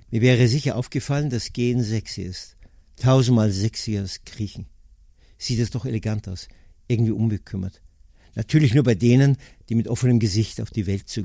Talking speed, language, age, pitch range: 165 wpm, German, 50-69, 95-125 Hz